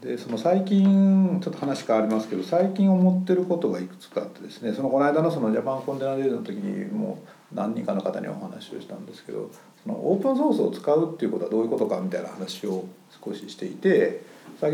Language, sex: Japanese, male